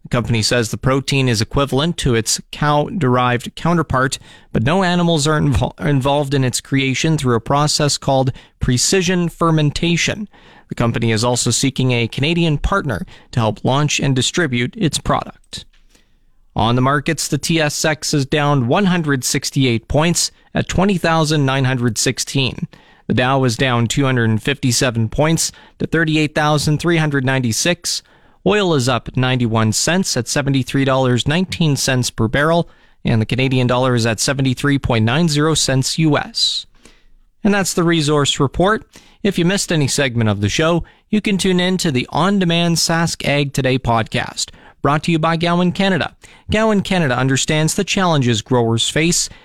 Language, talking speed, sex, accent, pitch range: English, 145 wpm, male, American, 125-170 Hz